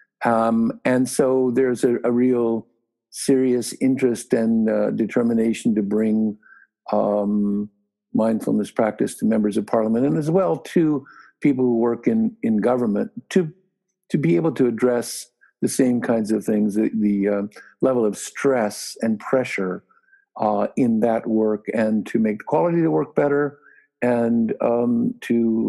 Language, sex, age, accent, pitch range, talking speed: English, male, 50-69, American, 110-150 Hz, 155 wpm